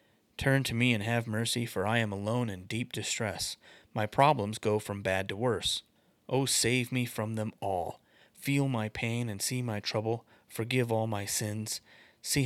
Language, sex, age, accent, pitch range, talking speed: English, male, 30-49, American, 100-120 Hz, 185 wpm